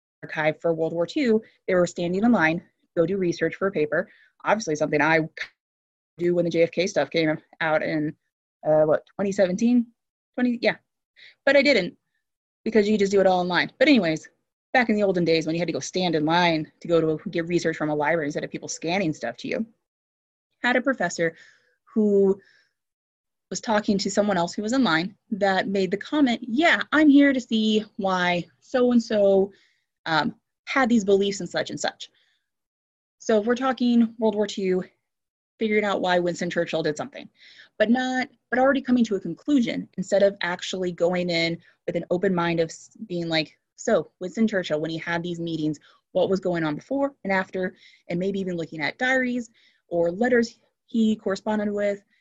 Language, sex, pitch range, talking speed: English, female, 170-225 Hz, 190 wpm